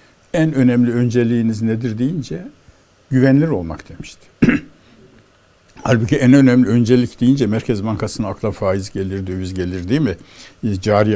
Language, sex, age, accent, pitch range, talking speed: Turkish, male, 60-79, native, 105-130 Hz, 125 wpm